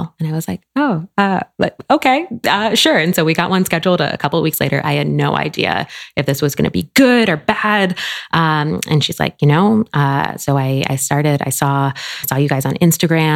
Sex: female